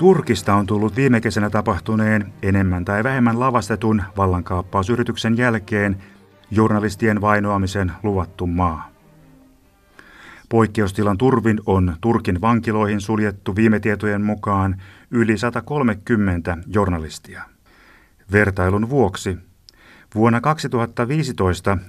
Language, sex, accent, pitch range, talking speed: Finnish, male, native, 95-115 Hz, 90 wpm